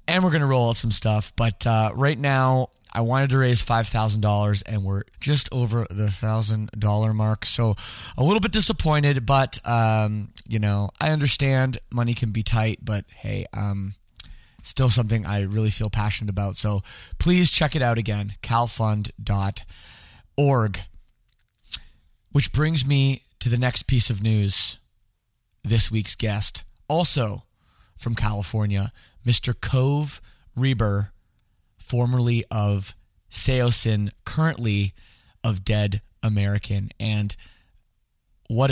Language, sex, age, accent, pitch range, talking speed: English, male, 20-39, American, 100-125 Hz, 130 wpm